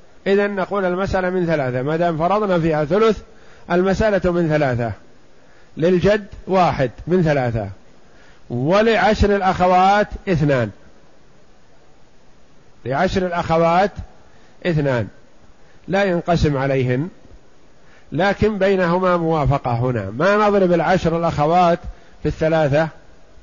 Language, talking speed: Arabic, 90 wpm